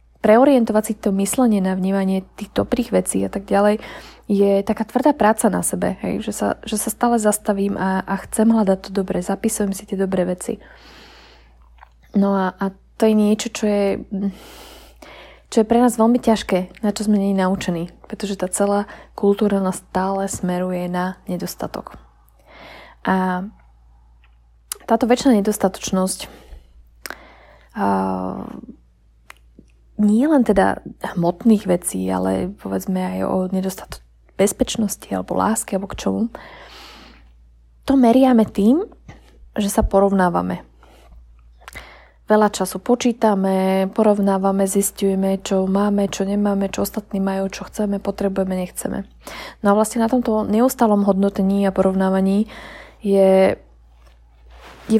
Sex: female